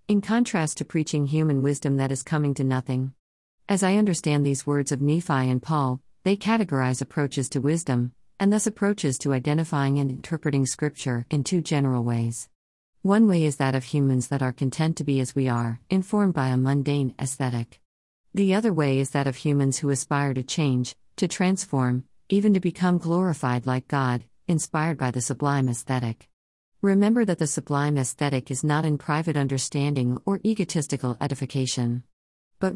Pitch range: 130-160 Hz